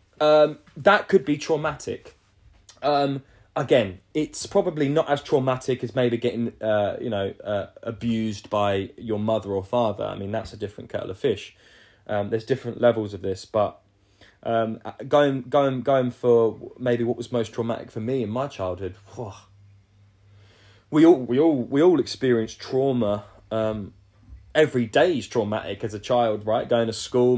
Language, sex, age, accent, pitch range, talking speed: English, male, 20-39, British, 105-130 Hz, 165 wpm